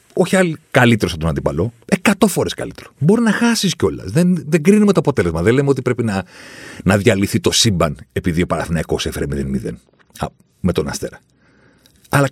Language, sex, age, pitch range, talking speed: Greek, male, 40-59, 95-135 Hz, 175 wpm